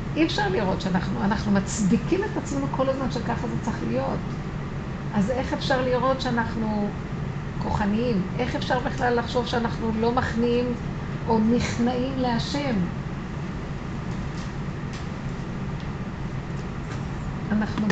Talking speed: 105 wpm